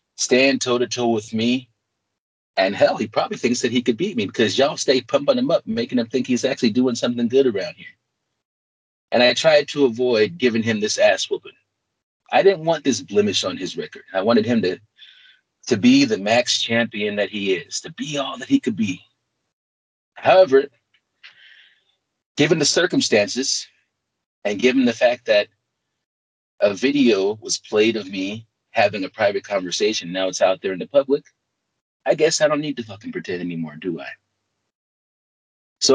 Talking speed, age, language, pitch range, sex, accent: 175 wpm, 30-49, English, 110-150 Hz, male, American